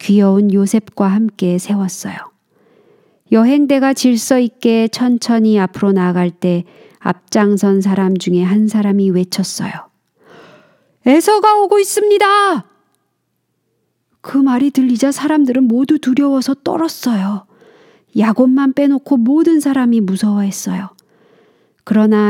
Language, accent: Korean, native